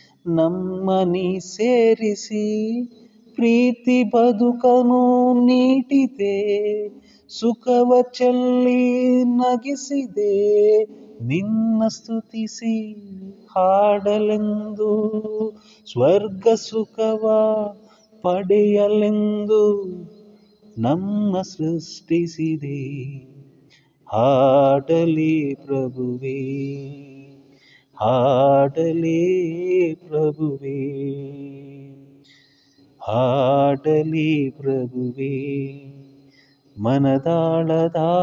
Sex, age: male, 30-49